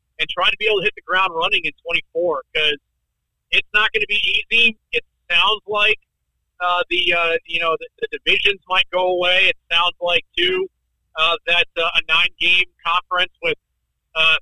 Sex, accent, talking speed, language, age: male, American, 185 wpm, English, 40-59